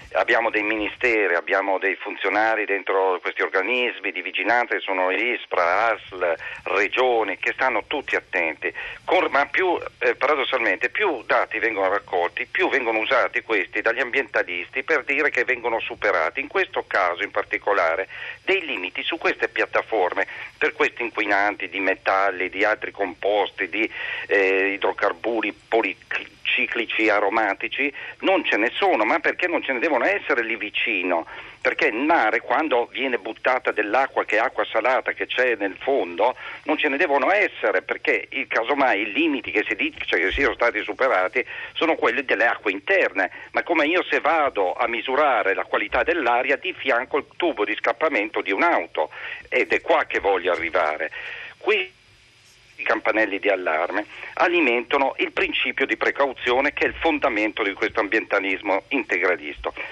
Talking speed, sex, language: 155 wpm, male, Italian